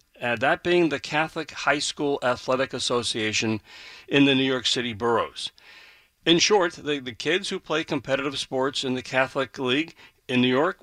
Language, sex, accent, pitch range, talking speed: English, male, American, 125-150 Hz, 170 wpm